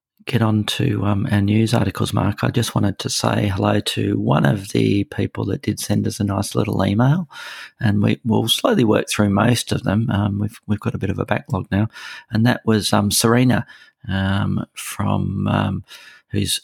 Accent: Australian